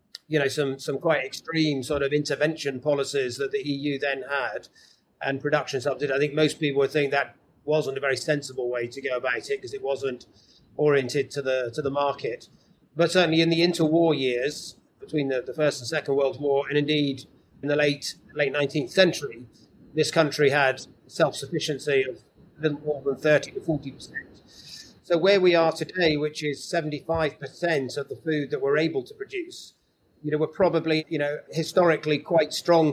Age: 40-59